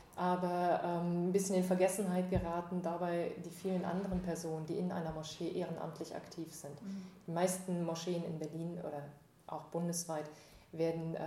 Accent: German